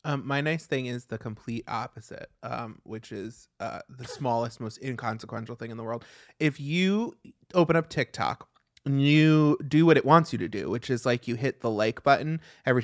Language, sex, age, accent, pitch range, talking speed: English, male, 20-39, American, 130-185 Hz, 200 wpm